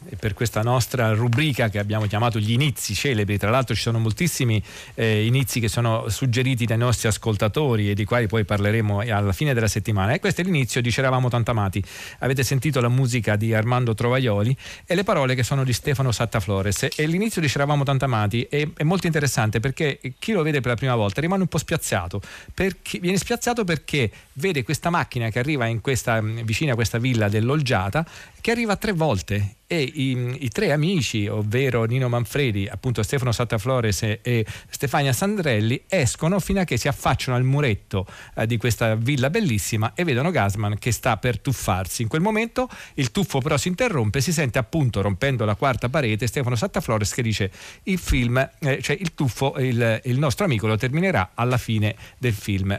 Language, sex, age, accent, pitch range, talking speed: Italian, male, 40-59, native, 110-145 Hz, 190 wpm